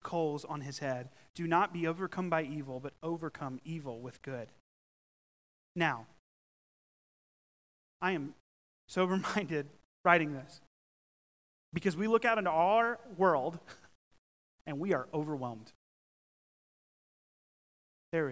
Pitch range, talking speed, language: 130-190 Hz, 110 wpm, English